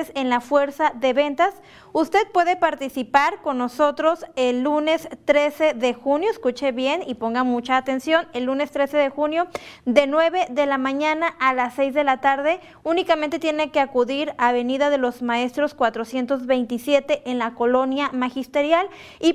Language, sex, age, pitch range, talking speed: Spanish, female, 30-49, 250-310 Hz, 160 wpm